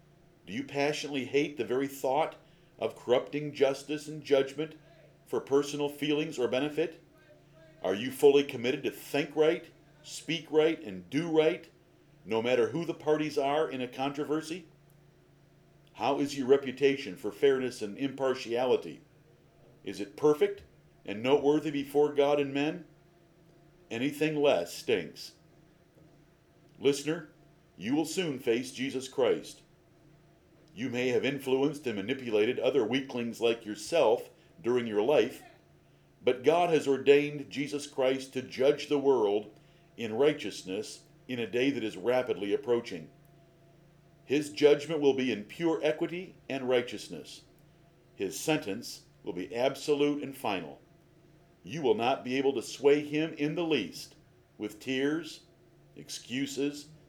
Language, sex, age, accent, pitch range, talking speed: English, male, 50-69, American, 135-160 Hz, 135 wpm